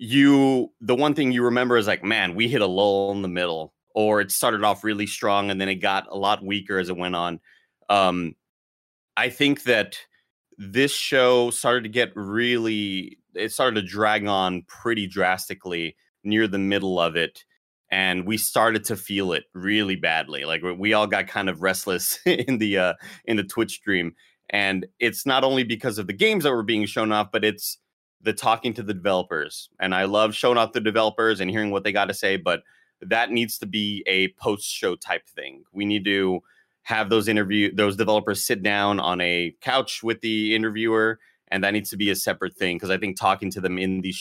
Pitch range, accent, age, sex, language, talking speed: 95-115 Hz, American, 30-49, male, English, 210 wpm